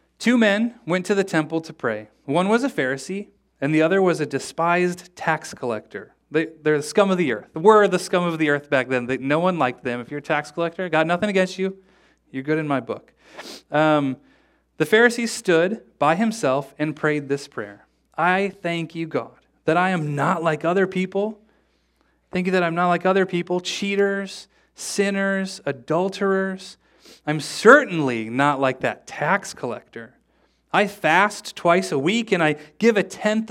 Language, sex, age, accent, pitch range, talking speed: English, male, 30-49, American, 140-190 Hz, 185 wpm